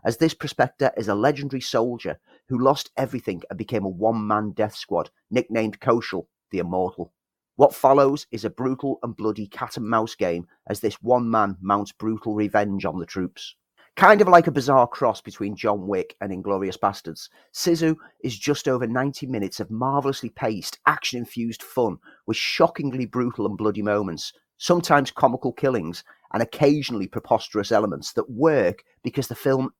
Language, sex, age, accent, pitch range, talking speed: English, male, 30-49, British, 105-140 Hz, 165 wpm